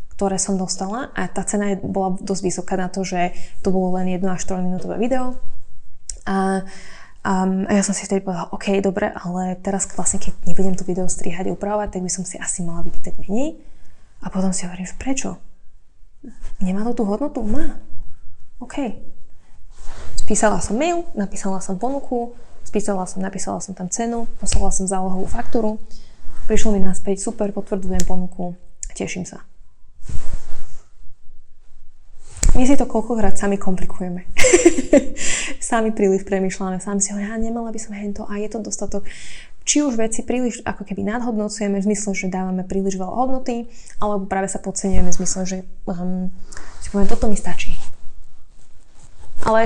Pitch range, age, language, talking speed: 180-210 Hz, 20-39, Slovak, 160 wpm